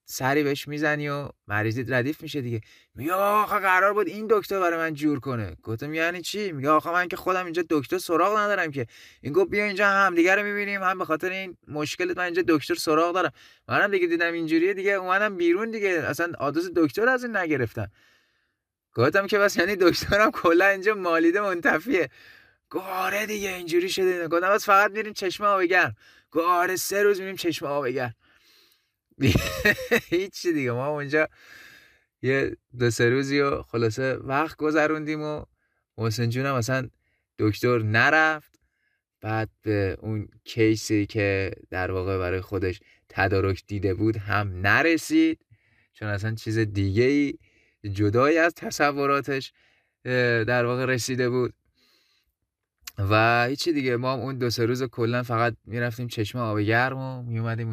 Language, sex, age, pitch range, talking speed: Persian, male, 20-39, 115-185 Hz, 145 wpm